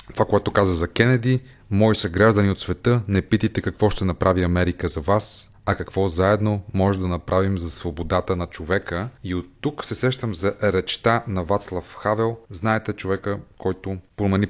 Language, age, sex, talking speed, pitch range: Bulgarian, 30-49, male, 170 wpm, 90-105 Hz